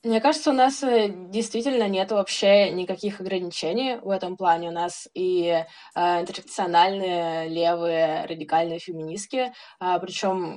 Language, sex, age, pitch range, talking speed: Russian, female, 20-39, 175-220 Hz, 125 wpm